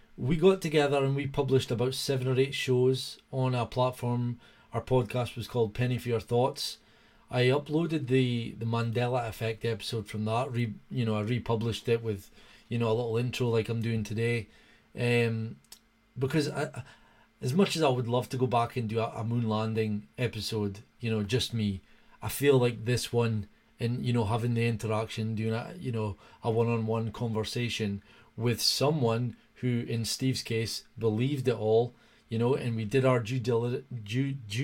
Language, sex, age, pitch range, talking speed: English, male, 30-49, 115-130 Hz, 185 wpm